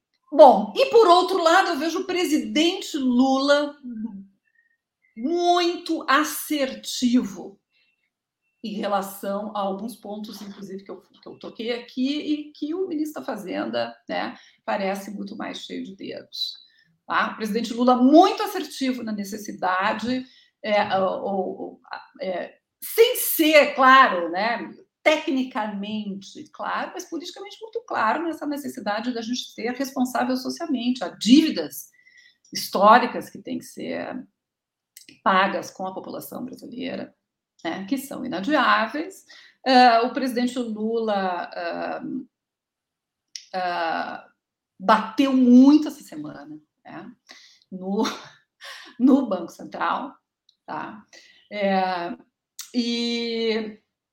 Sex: female